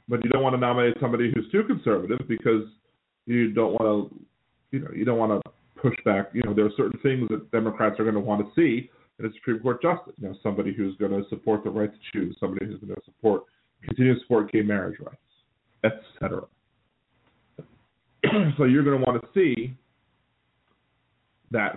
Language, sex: English, male